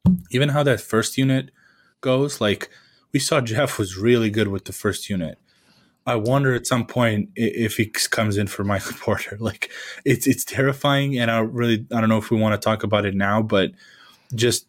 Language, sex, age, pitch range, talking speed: English, male, 20-39, 100-120 Hz, 200 wpm